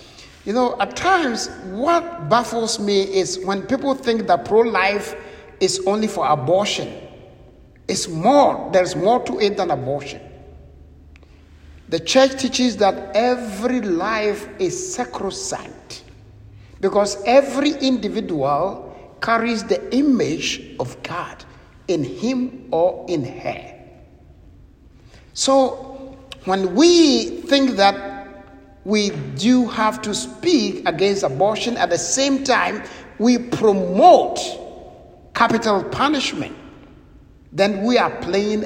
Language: English